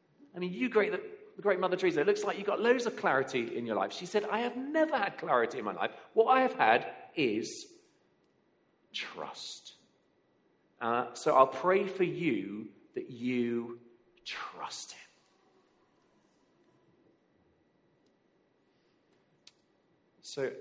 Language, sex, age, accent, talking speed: English, male, 40-59, British, 135 wpm